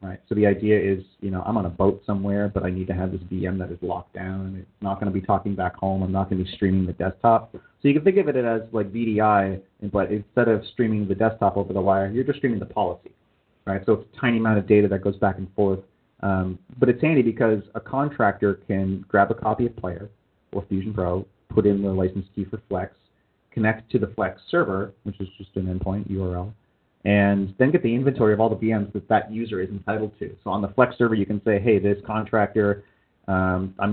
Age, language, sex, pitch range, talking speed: 30-49, English, male, 95-110 Hz, 240 wpm